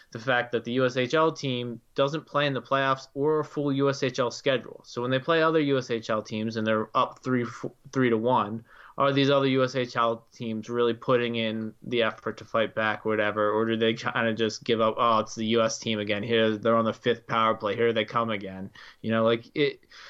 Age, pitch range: 20-39, 110-130 Hz